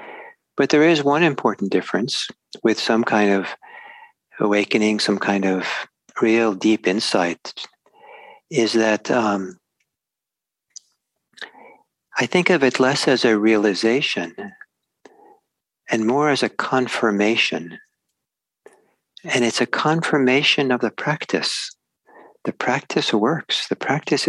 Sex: male